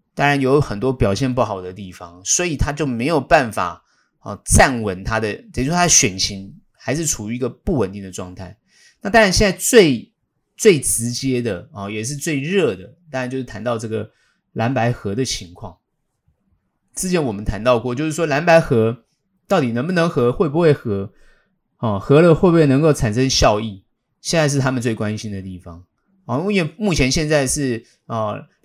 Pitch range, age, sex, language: 110-155 Hz, 20-39, male, Chinese